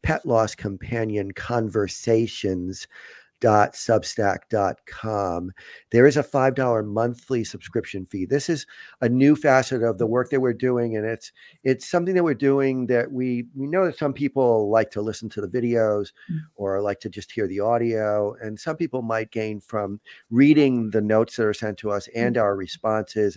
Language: English